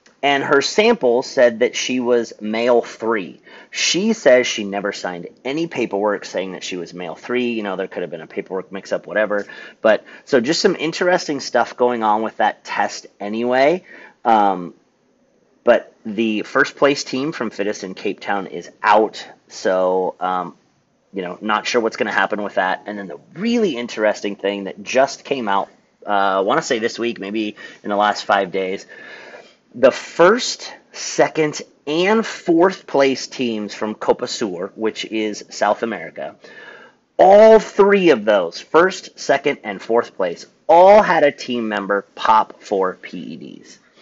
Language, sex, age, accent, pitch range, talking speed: English, male, 30-49, American, 105-145 Hz, 165 wpm